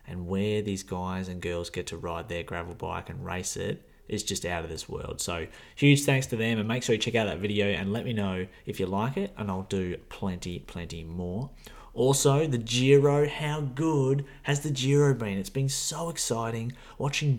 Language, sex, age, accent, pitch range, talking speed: English, male, 20-39, Australian, 95-120 Hz, 215 wpm